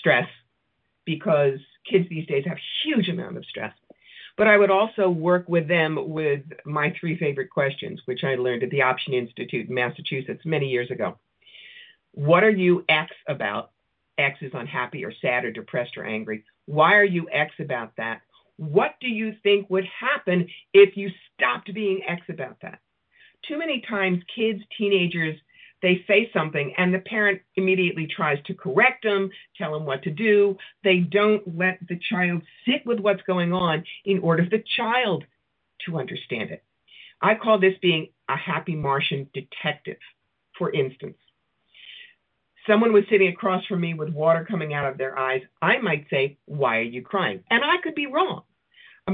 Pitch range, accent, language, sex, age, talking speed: 150-205 Hz, American, English, female, 50-69, 175 wpm